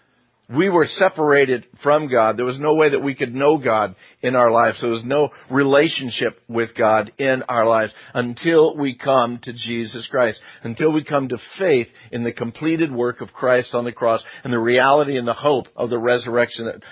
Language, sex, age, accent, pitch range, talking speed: English, male, 50-69, American, 115-140 Hz, 200 wpm